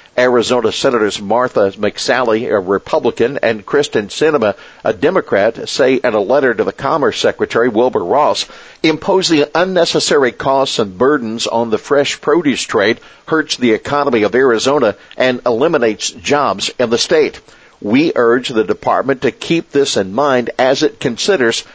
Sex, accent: male, American